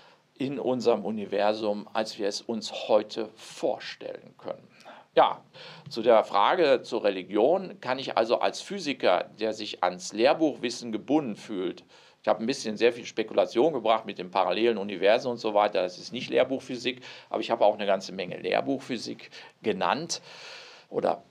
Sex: male